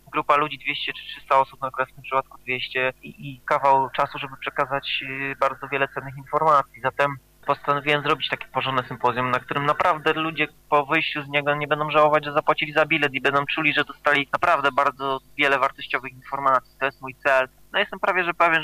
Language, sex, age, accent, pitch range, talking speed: Polish, male, 20-39, native, 120-140 Hz, 200 wpm